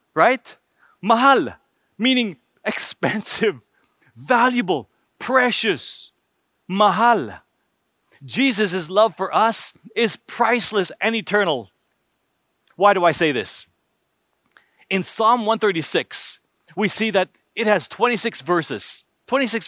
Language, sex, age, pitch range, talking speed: English, male, 40-59, 180-240 Hz, 95 wpm